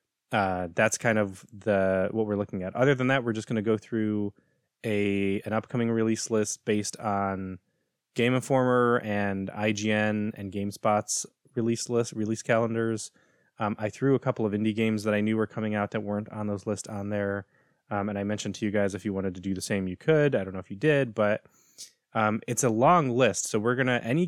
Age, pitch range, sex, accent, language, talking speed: 20-39, 100-120 Hz, male, American, English, 215 wpm